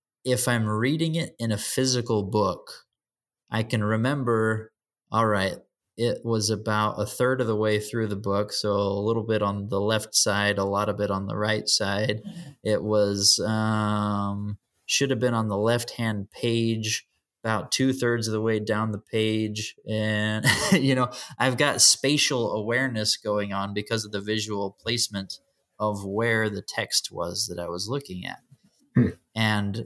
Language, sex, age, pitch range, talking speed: English, male, 20-39, 100-115 Hz, 170 wpm